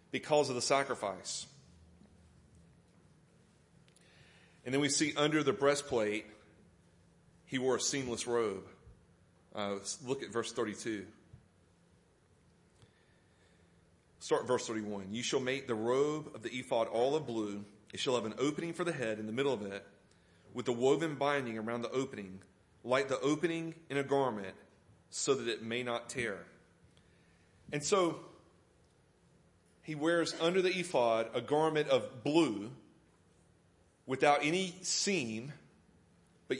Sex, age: male, 40-59